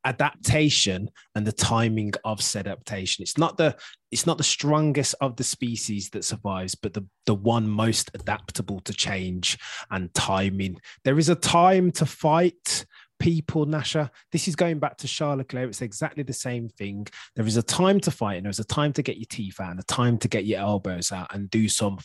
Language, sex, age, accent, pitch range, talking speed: English, male, 20-39, British, 110-165 Hz, 205 wpm